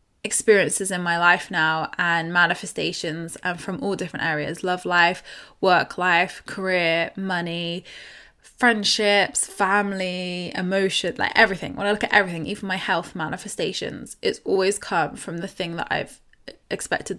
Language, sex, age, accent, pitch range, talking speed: English, female, 20-39, British, 180-225 Hz, 145 wpm